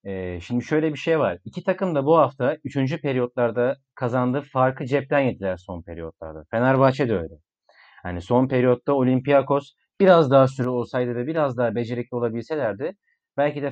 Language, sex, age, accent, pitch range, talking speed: Turkish, male, 40-59, native, 125-170 Hz, 160 wpm